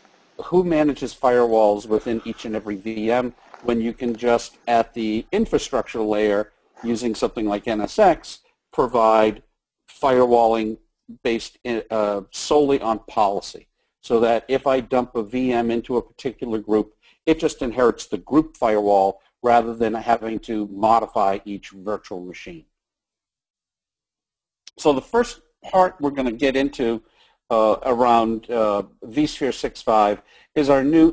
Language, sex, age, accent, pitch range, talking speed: English, male, 50-69, American, 110-135 Hz, 130 wpm